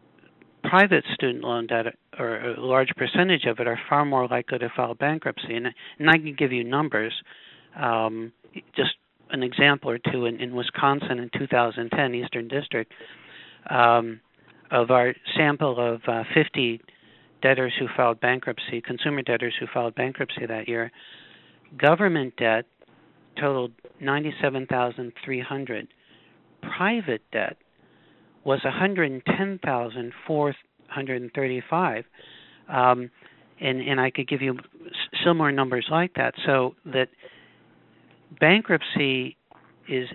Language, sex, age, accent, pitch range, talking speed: English, male, 60-79, American, 120-145 Hz, 120 wpm